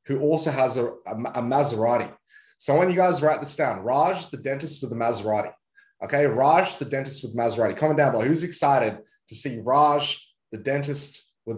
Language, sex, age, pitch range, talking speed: English, male, 20-39, 120-155 Hz, 195 wpm